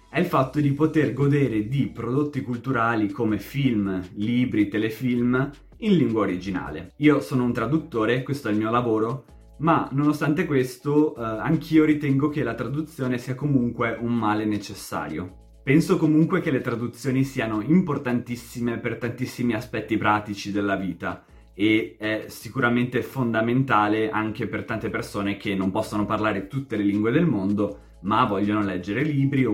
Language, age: Italian, 20-39